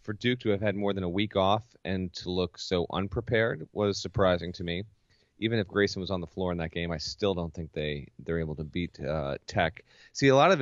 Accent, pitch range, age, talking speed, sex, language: American, 90-115 Hz, 30-49, 250 wpm, male, English